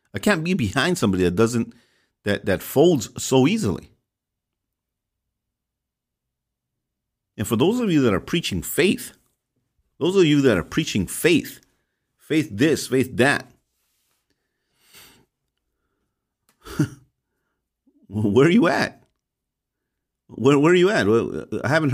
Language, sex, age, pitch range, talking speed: English, male, 50-69, 95-155 Hz, 120 wpm